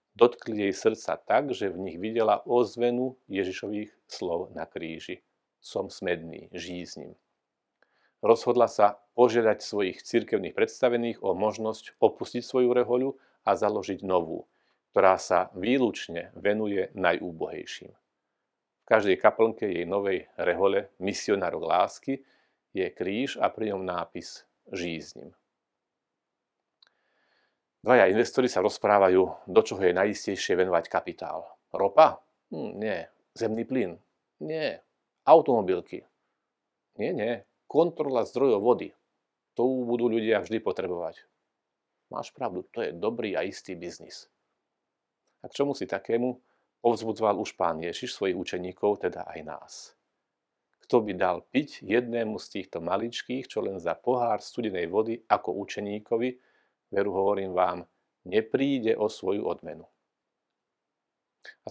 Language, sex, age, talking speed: Slovak, male, 40-59, 120 wpm